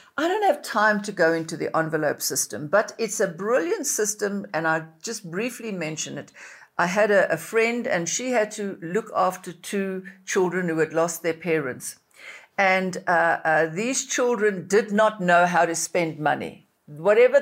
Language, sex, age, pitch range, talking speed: English, female, 60-79, 185-255 Hz, 180 wpm